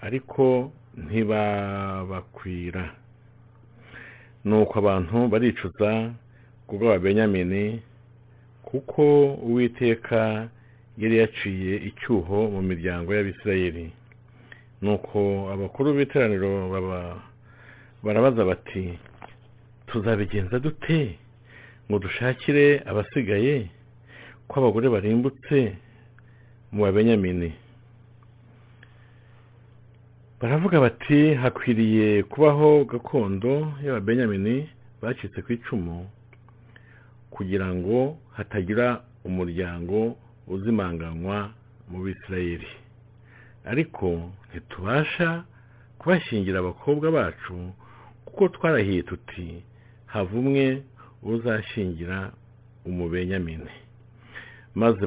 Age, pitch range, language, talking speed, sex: 50-69, 100-120 Hz, English, 65 wpm, male